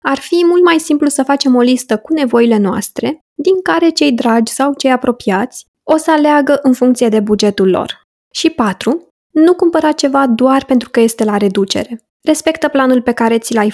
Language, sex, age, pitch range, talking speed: Romanian, female, 20-39, 220-275 Hz, 190 wpm